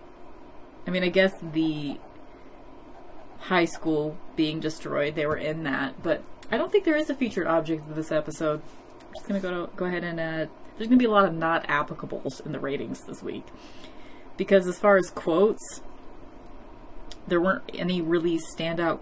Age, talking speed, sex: 30-49, 180 wpm, female